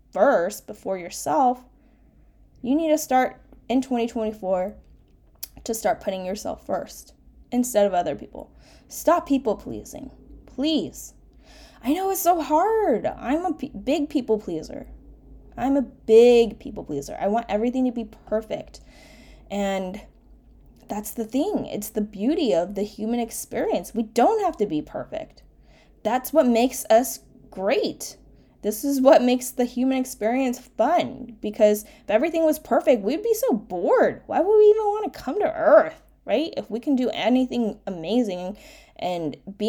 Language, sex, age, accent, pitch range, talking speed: English, female, 10-29, American, 200-275 Hz, 150 wpm